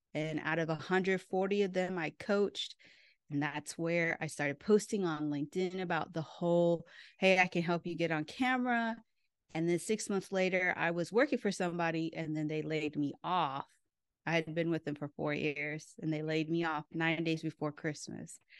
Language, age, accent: English, 30-49, American